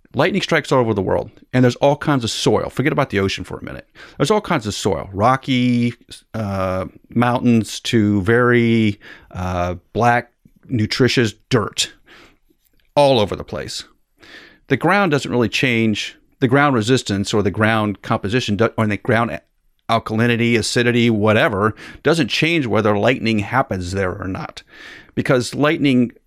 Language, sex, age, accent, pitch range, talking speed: English, male, 40-59, American, 105-130 Hz, 150 wpm